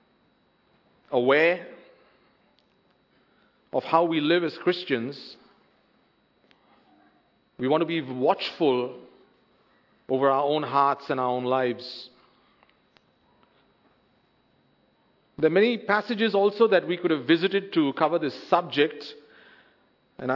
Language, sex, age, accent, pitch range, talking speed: English, male, 50-69, Indian, 140-185 Hz, 105 wpm